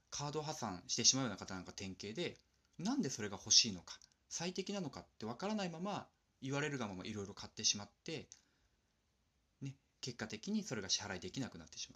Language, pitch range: Japanese, 100-155 Hz